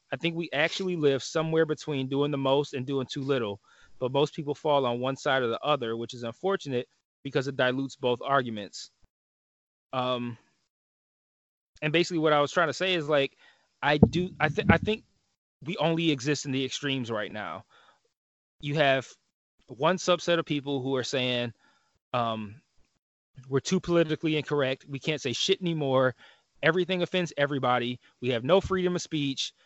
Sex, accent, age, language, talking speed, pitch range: male, American, 20-39, English, 170 wpm, 135-165 Hz